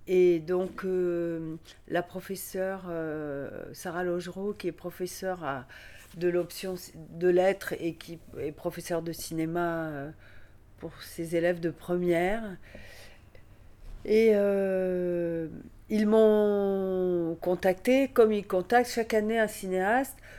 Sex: female